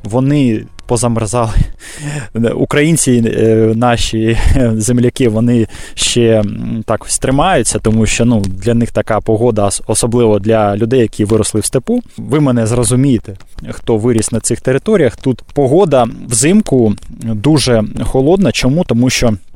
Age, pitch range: 20-39, 110-135 Hz